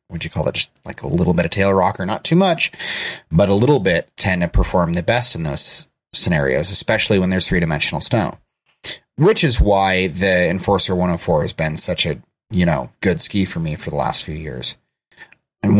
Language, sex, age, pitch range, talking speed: English, male, 30-49, 85-105 Hz, 220 wpm